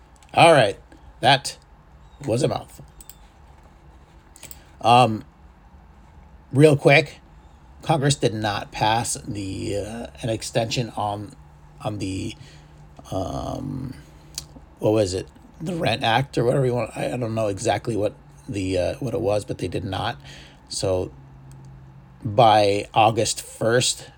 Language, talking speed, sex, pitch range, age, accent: English, 125 wpm, male, 80-130 Hz, 30-49, American